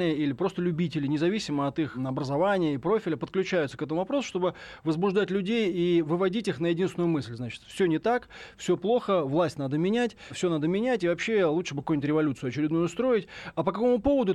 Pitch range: 150-190 Hz